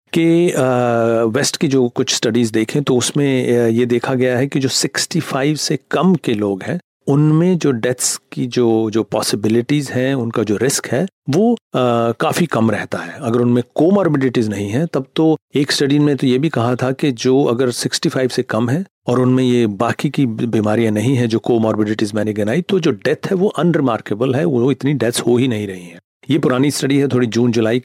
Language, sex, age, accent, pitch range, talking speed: Hindi, male, 40-59, native, 115-155 Hz, 205 wpm